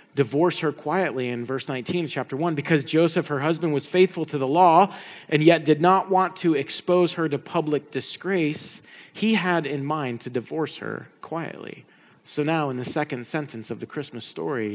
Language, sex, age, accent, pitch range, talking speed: English, male, 30-49, American, 130-175 Hz, 190 wpm